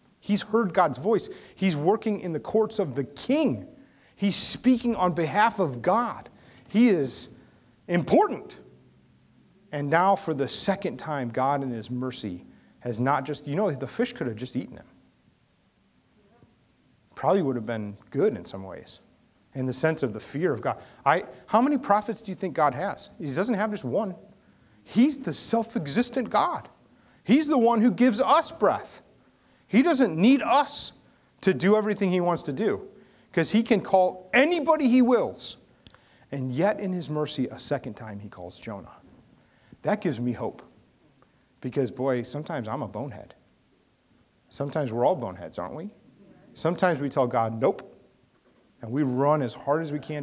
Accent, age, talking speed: American, 30-49, 170 wpm